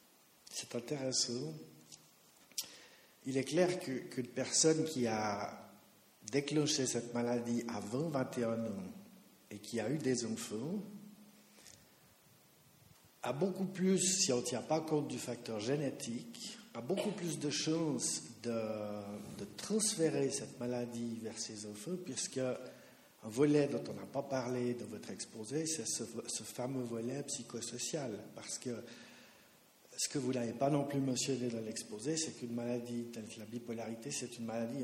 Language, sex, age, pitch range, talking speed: French, male, 50-69, 120-145 Hz, 145 wpm